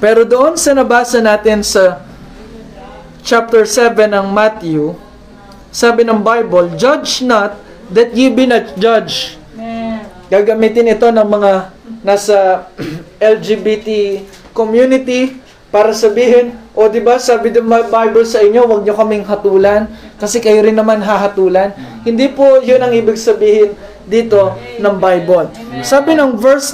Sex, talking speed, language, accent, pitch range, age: male, 130 wpm, Filipino, native, 210-255 Hz, 20-39